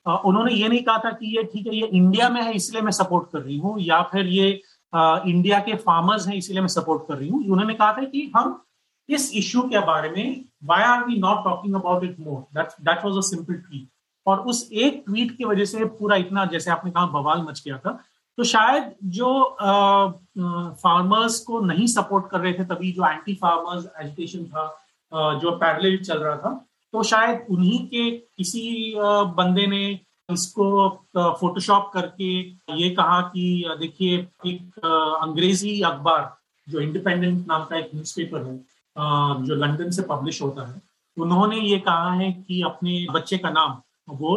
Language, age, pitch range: Hindi, 30-49, 165-205 Hz